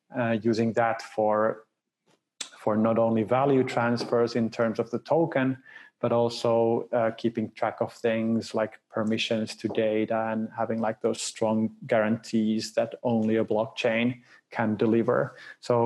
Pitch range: 115-130 Hz